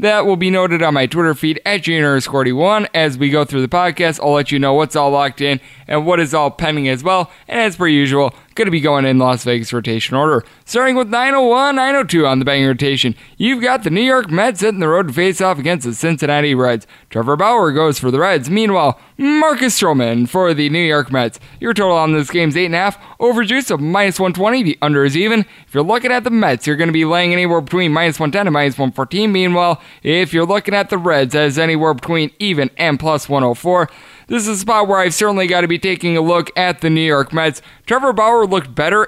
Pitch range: 145-185 Hz